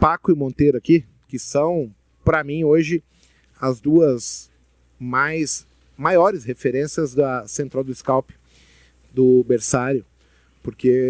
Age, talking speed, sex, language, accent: 40-59, 115 wpm, male, Portuguese, Brazilian